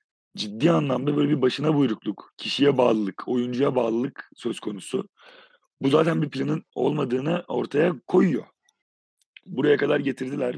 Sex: male